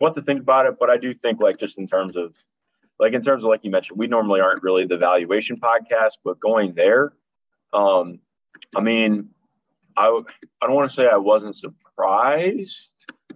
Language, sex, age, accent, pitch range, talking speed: English, male, 20-39, American, 95-130 Hz, 200 wpm